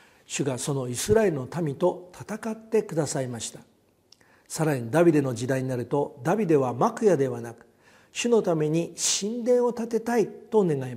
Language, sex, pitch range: Japanese, male, 135-200 Hz